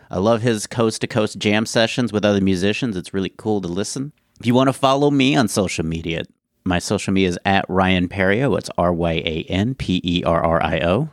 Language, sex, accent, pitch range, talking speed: English, male, American, 95-125 Hz, 175 wpm